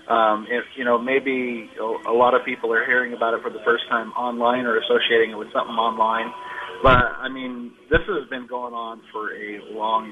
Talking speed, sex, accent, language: 210 wpm, male, American, English